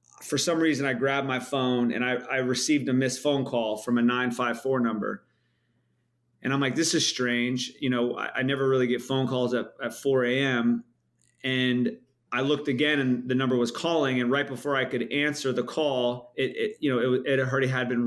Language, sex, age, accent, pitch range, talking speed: English, male, 30-49, American, 120-140 Hz, 210 wpm